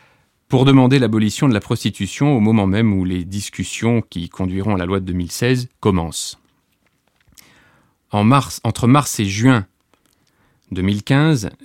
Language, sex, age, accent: French, male, 30-49, French